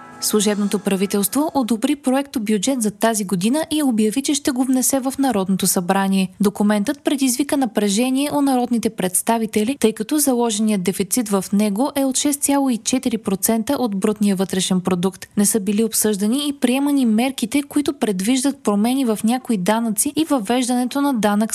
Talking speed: 150 wpm